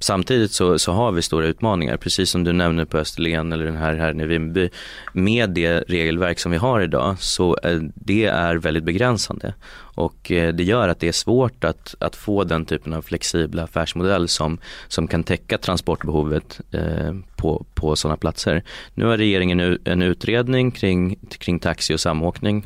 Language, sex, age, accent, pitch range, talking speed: Swedish, male, 20-39, native, 80-95 Hz, 170 wpm